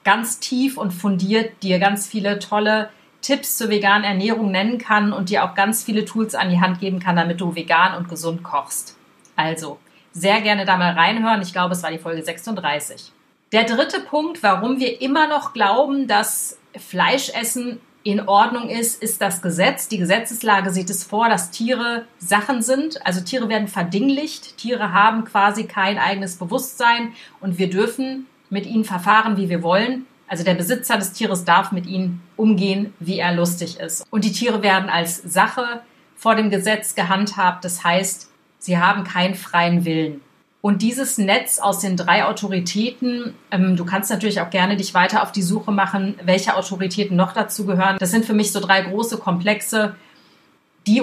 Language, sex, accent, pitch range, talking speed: German, female, German, 185-225 Hz, 180 wpm